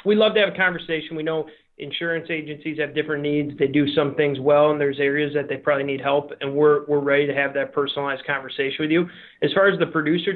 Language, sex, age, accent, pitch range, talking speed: English, male, 30-49, American, 150-170 Hz, 245 wpm